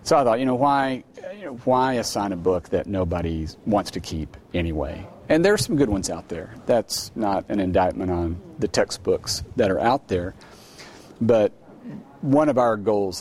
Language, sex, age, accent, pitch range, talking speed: English, male, 40-59, American, 90-110 Hz, 190 wpm